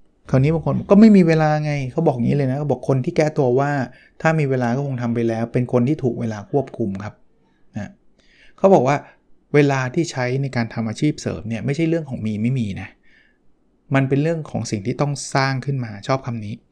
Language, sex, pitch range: Thai, male, 120-155 Hz